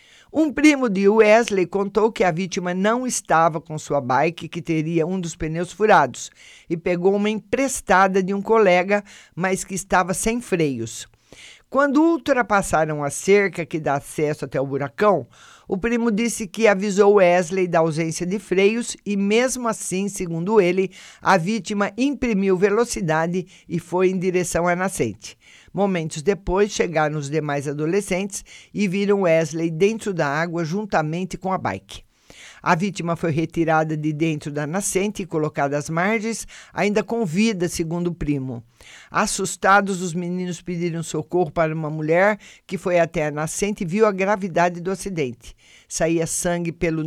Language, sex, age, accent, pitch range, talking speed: Portuguese, male, 50-69, Brazilian, 165-205 Hz, 155 wpm